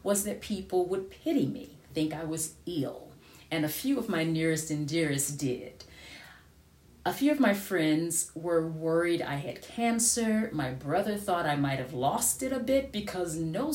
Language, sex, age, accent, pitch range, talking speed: Ukrainian, female, 40-59, American, 135-185 Hz, 180 wpm